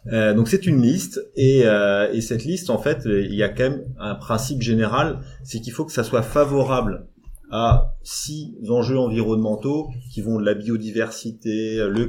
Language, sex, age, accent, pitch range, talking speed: French, male, 30-49, French, 100-125 Hz, 185 wpm